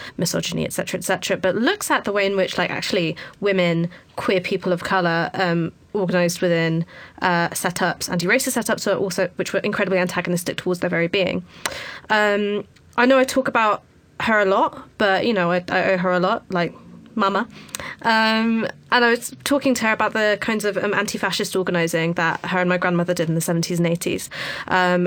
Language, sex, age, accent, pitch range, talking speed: English, female, 20-39, British, 175-205 Hz, 190 wpm